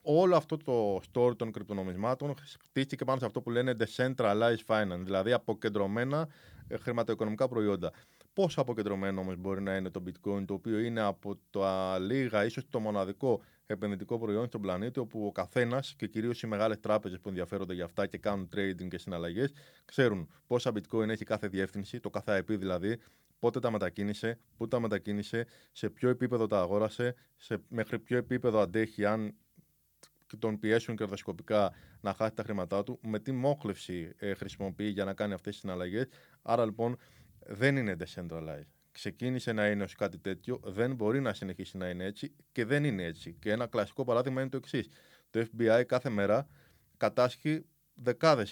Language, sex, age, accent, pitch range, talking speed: Greek, male, 20-39, native, 95-120 Hz, 165 wpm